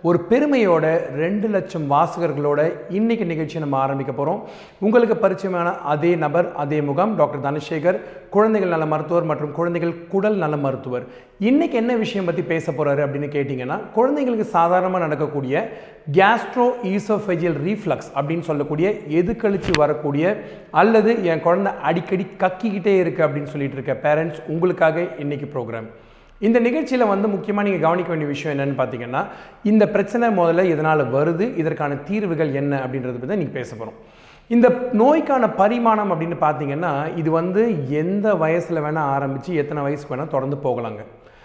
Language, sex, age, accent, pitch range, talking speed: Tamil, male, 30-49, native, 145-195 Hz, 135 wpm